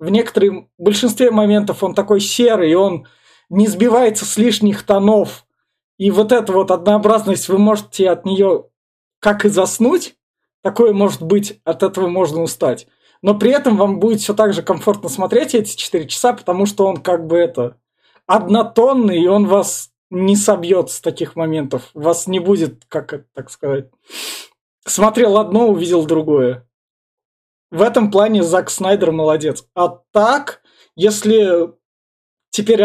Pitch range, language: 175-210 Hz, Russian